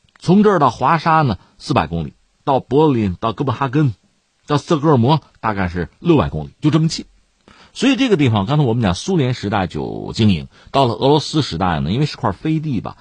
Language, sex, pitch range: Chinese, male, 100-150 Hz